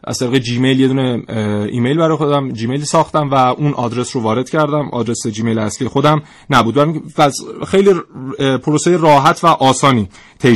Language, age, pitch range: Persian, 30-49, 120-160 Hz